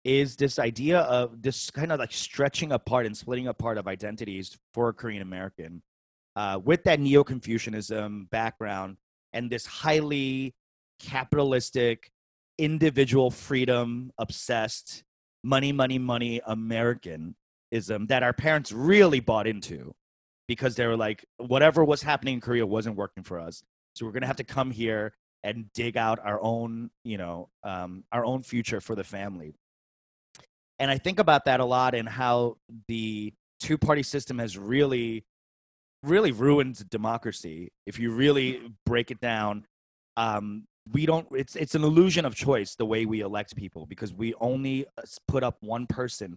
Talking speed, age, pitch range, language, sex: 150 wpm, 30-49, 105-135 Hz, English, male